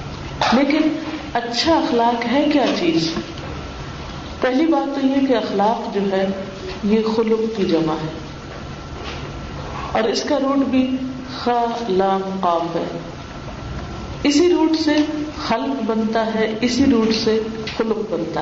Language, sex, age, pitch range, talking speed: Urdu, female, 50-69, 180-260 Hz, 120 wpm